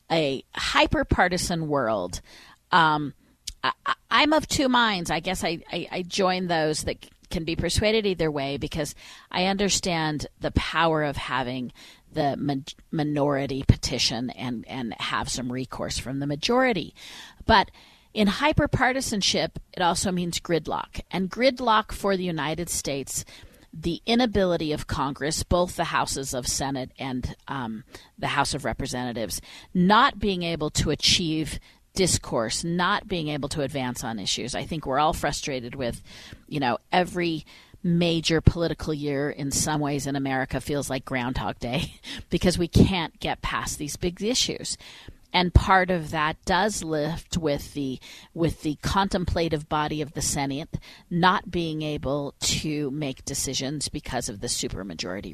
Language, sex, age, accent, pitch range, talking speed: English, female, 40-59, American, 140-180 Hz, 145 wpm